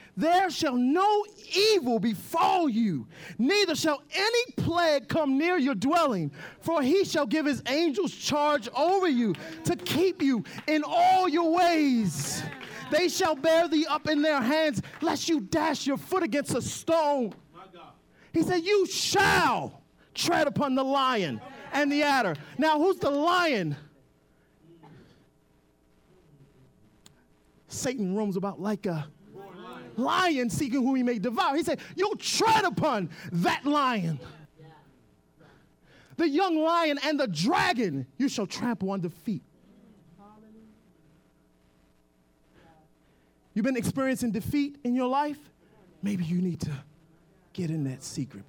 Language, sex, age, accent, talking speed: English, male, 30-49, American, 130 wpm